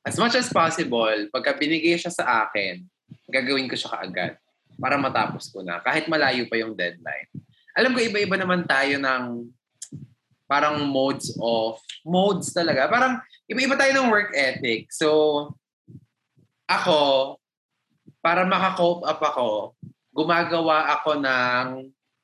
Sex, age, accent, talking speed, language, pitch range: male, 20-39, native, 125 wpm, Filipino, 120-170 Hz